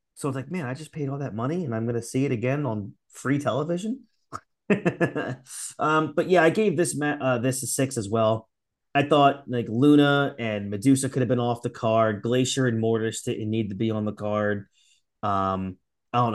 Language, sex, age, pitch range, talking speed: English, male, 30-49, 105-135 Hz, 205 wpm